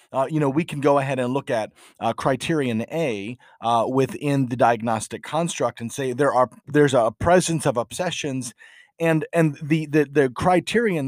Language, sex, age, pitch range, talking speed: English, male, 40-59, 125-160 Hz, 180 wpm